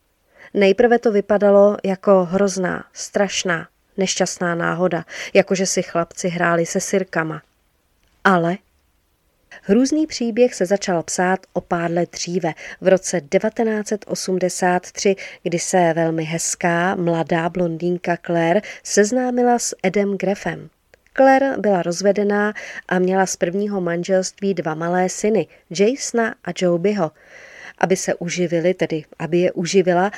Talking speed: 115 wpm